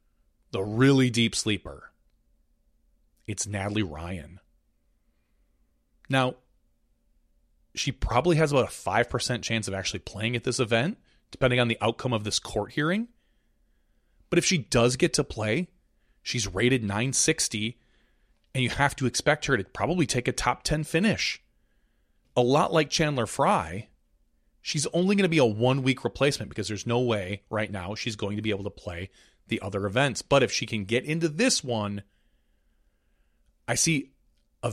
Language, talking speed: English, 160 wpm